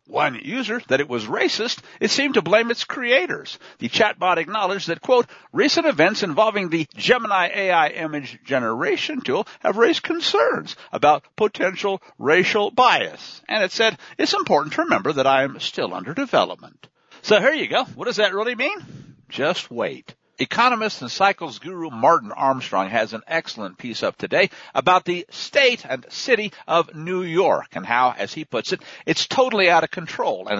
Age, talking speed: 60-79, 175 wpm